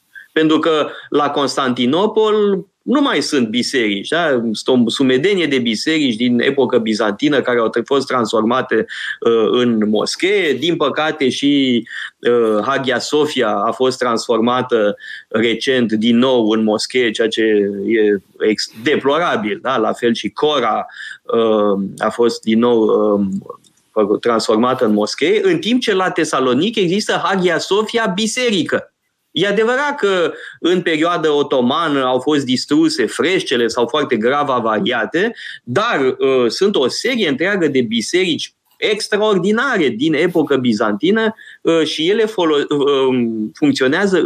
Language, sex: Romanian, male